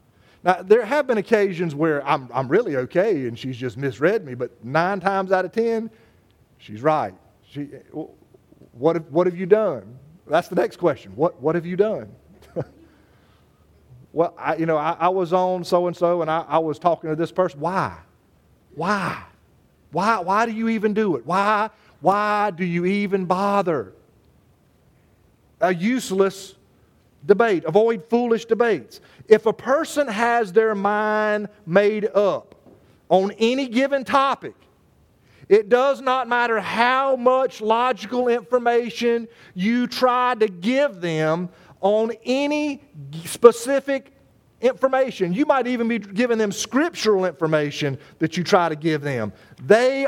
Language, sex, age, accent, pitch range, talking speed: English, male, 40-59, American, 165-235 Hz, 145 wpm